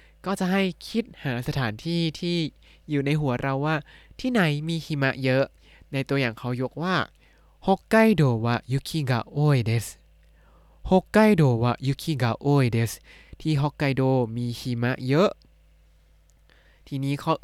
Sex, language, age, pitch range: male, Thai, 20-39, 115-150 Hz